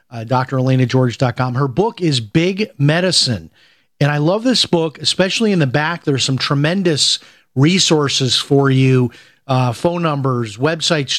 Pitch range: 140-170 Hz